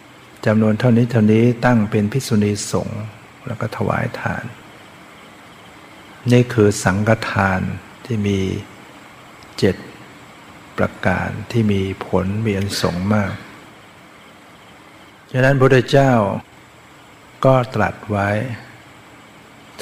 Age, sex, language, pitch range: 60-79, male, Thai, 105-120 Hz